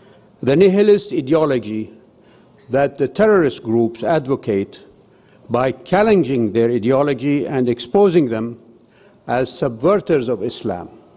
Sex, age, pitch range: male, 60-79, 125-175 Hz